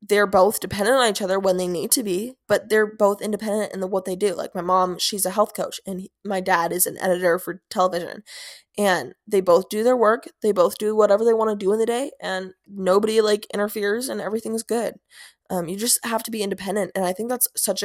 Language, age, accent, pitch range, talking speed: English, 20-39, American, 185-215 Hz, 235 wpm